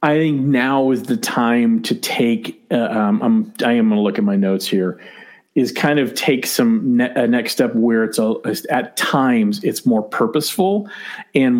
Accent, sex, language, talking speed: American, male, English, 175 wpm